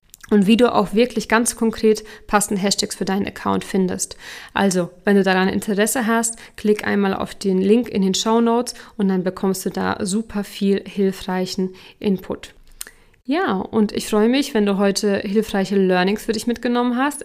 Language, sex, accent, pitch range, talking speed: German, female, German, 195-235 Hz, 175 wpm